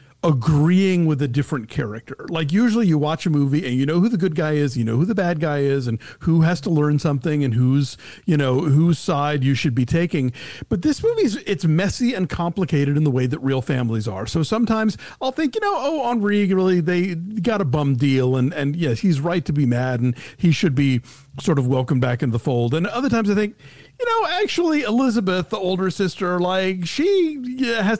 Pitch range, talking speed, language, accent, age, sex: 140-190 Hz, 215 wpm, English, American, 40-59, male